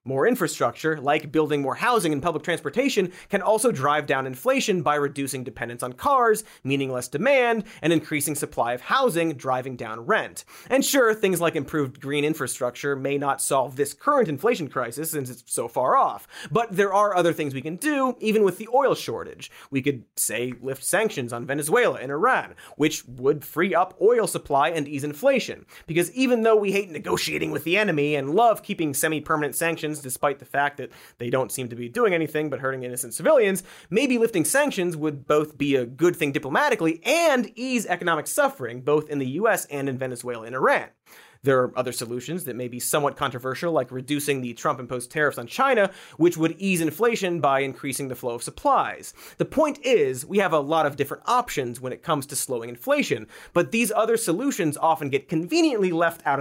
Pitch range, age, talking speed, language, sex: 135-200 Hz, 30-49, 195 wpm, English, male